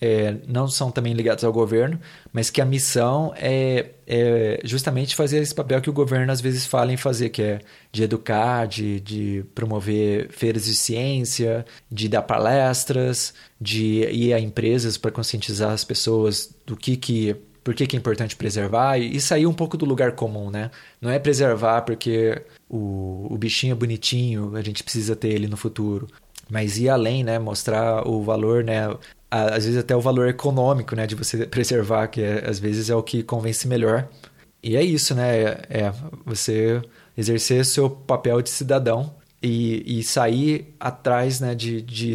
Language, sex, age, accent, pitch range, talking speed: Portuguese, male, 20-39, Brazilian, 110-130 Hz, 175 wpm